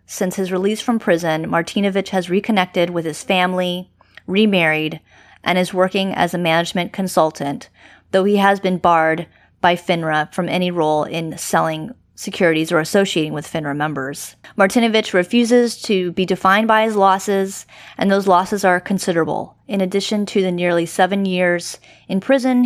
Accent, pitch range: American, 165-195 Hz